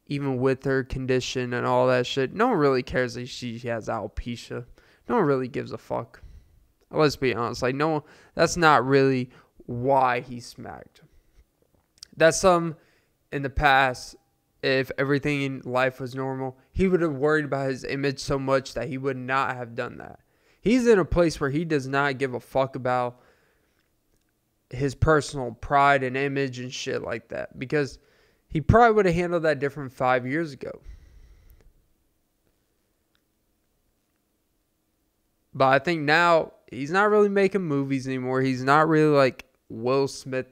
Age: 20-39